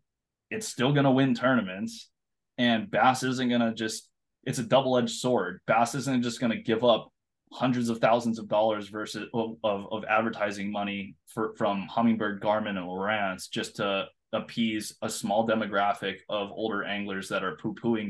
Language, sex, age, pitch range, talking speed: English, male, 20-39, 110-130 Hz, 170 wpm